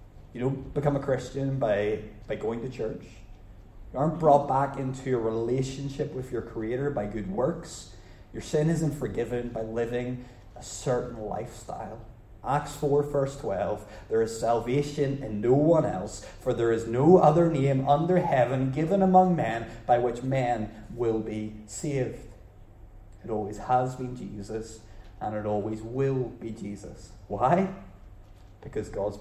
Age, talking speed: 30-49, 150 wpm